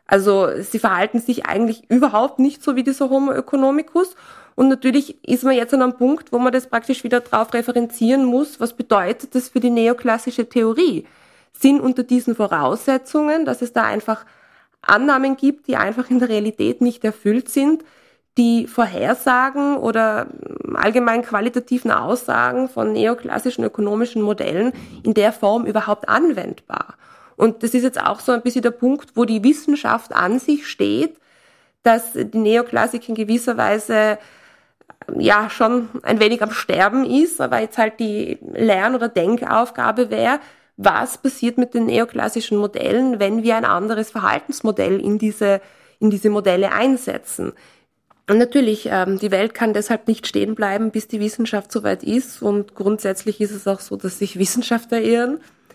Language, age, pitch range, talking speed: German, 20-39, 215-260 Hz, 155 wpm